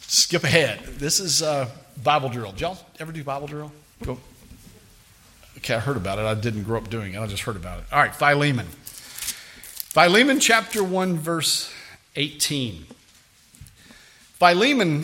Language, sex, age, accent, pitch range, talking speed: English, male, 50-69, American, 125-170 Hz, 155 wpm